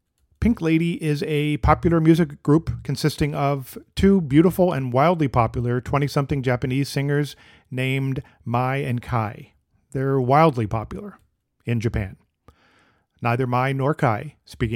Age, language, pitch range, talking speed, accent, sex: 40-59, English, 120-145 Hz, 125 wpm, American, male